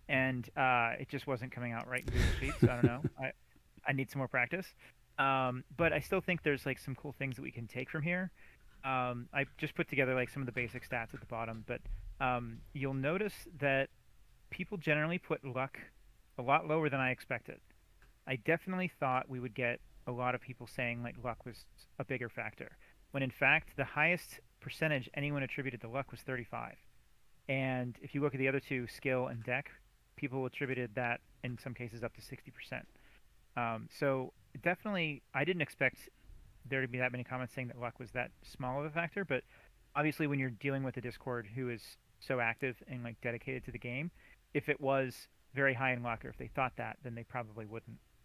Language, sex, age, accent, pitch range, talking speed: English, male, 30-49, American, 120-140 Hz, 210 wpm